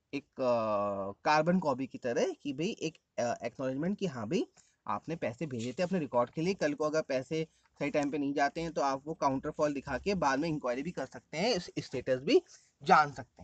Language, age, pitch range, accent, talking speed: English, 30-49, 145-220 Hz, Indian, 220 wpm